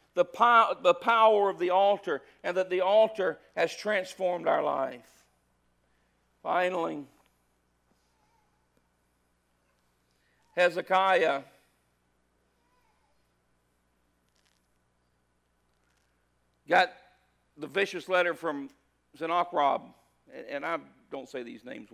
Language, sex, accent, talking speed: English, male, American, 75 wpm